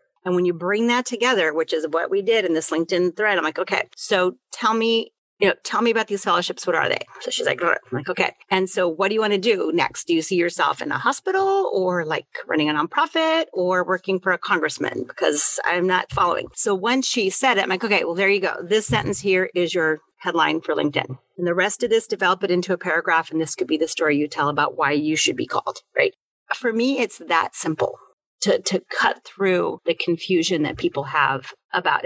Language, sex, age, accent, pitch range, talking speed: English, female, 40-59, American, 165-235 Hz, 235 wpm